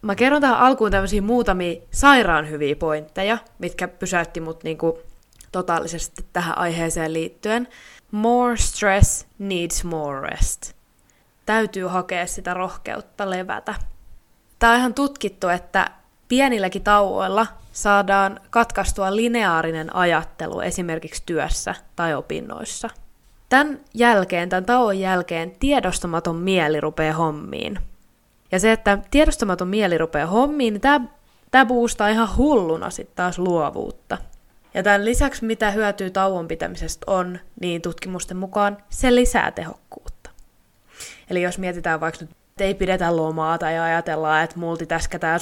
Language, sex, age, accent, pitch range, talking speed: Finnish, female, 20-39, native, 165-215 Hz, 120 wpm